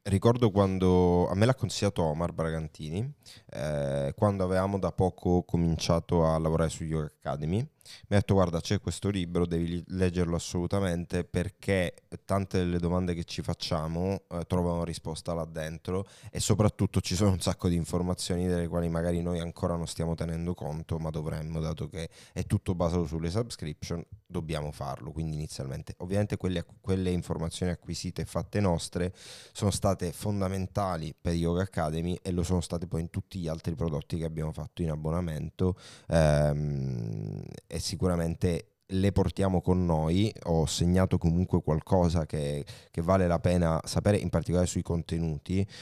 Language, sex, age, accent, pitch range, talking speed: Italian, male, 20-39, native, 80-95 Hz, 160 wpm